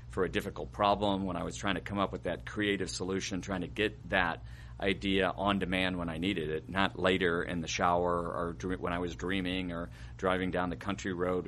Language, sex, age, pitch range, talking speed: English, male, 40-59, 85-95 Hz, 220 wpm